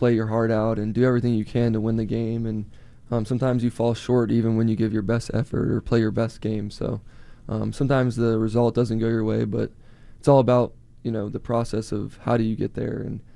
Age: 20-39